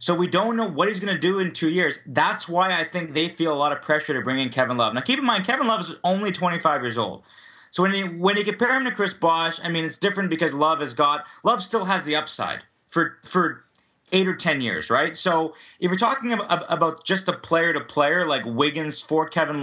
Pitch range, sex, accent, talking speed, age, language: 150-190 Hz, male, American, 250 wpm, 30-49, English